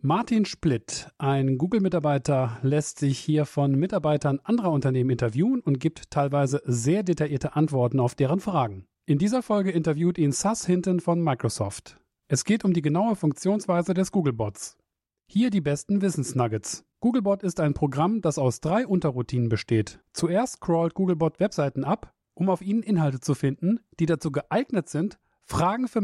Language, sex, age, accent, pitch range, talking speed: German, male, 40-59, German, 140-190 Hz, 155 wpm